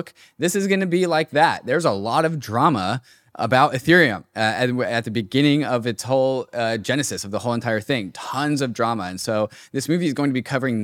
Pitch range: 110-140 Hz